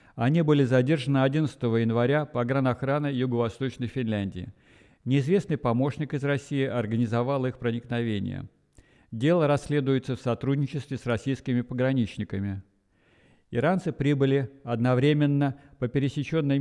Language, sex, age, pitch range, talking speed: Russian, male, 50-69, 120-140 Hz, 100 wpm